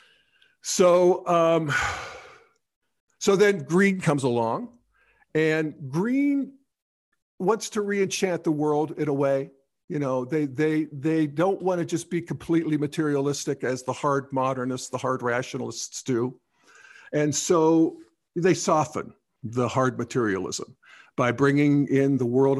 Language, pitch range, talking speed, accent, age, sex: English, 125-160 Hz, 130 wpm, American, 50-69, male